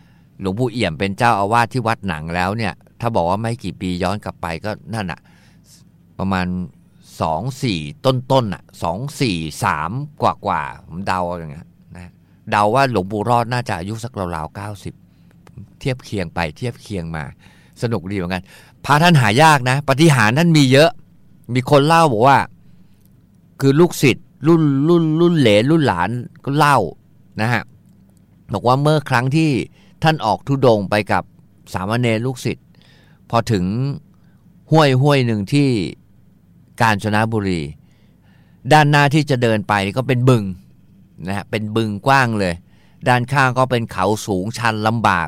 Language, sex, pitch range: Thai, male, 100-135 Hz